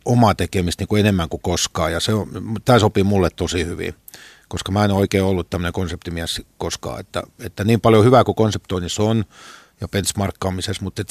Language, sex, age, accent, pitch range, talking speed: Finnish, male, 50-69, native, 90-105 Hz, 165 wpm